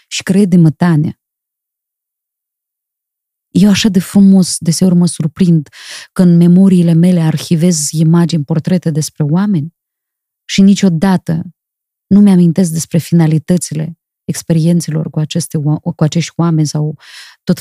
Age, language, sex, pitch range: 20-39, Romanian, female, 160-215 Hz